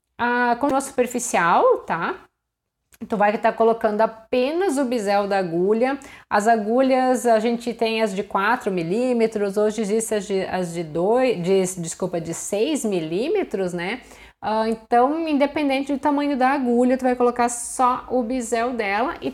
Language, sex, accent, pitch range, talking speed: Portuguese, female, Brazilian, 195-255 Hz, 165 wpm